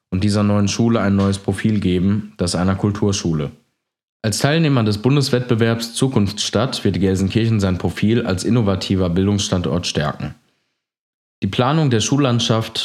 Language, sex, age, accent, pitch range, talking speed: German, male, 20-39, German, 95-110 Hz, 125 wpm